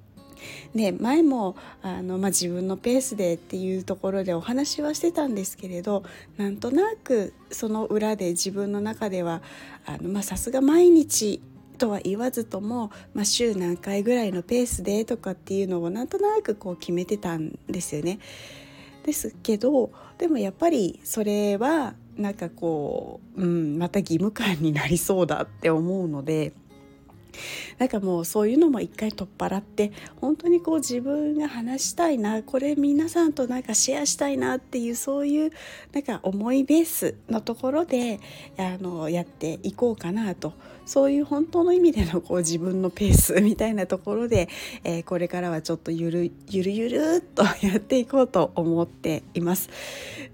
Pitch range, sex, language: 180-255 Hz, female, Japanese